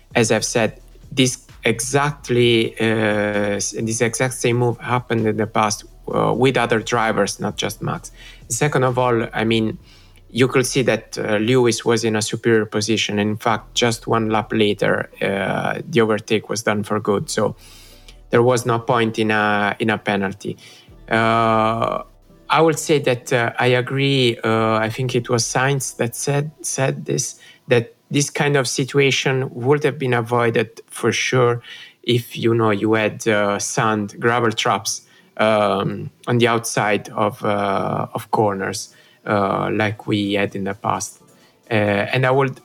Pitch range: 110-125 Hz